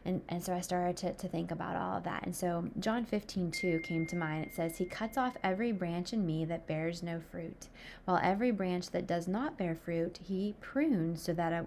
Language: English